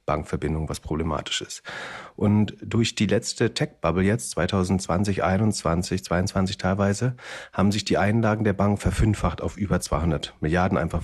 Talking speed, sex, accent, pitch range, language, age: 140 wpm, male, German, 90-110 Hz, German, 40-59